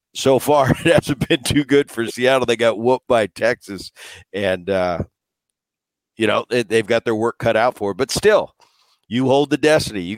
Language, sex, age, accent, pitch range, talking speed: English, male, 50-69, American, 95-125 Hz, 200 wpm